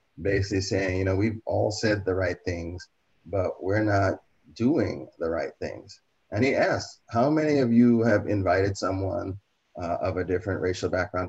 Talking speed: 175 wpm